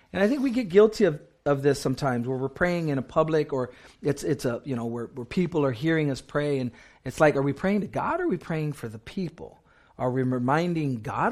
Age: 40-59